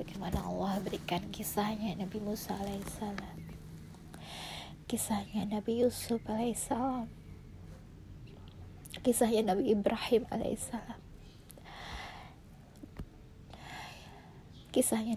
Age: 20-39